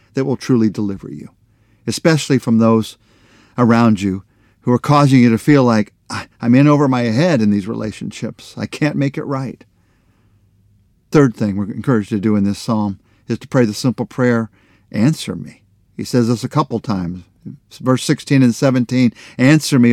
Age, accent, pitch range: 50-69, American, 105-135 Hz